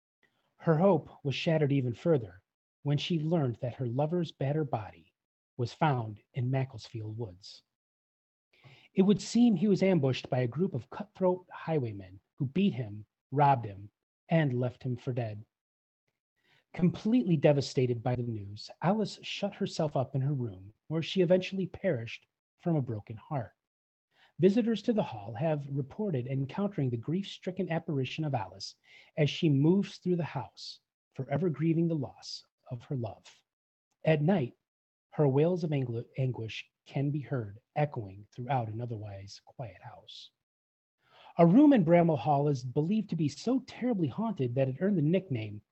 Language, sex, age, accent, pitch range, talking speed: English, male, 30-49, American, 120-175 Hz, 155 wpm